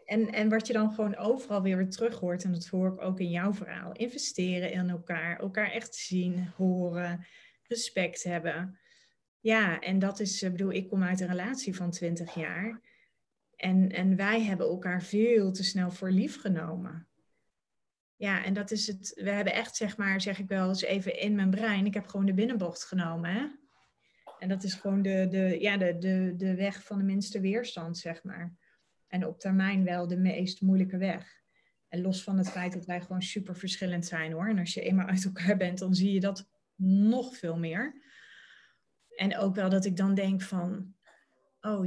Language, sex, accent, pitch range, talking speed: Dutch, female, Dutch, 180-215 Hz, 195 wpm